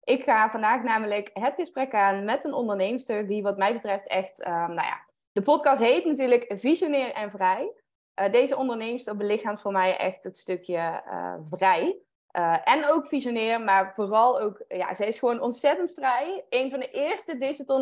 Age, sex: 20-39, female